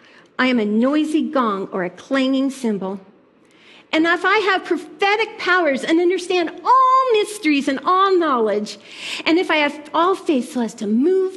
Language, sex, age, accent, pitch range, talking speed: English, female, 40-59, American, 215-280 Hz, 170 wpm